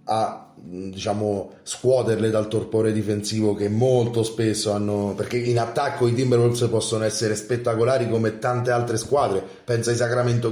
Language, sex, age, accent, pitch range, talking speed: Italian, male, 30-49, native, 105-120 Hz, 145 wpm